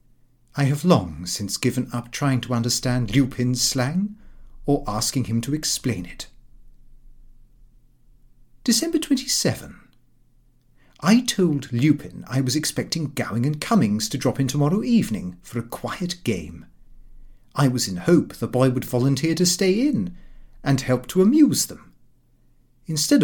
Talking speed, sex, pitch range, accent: 140 wpm, male, 120-175 Hz, British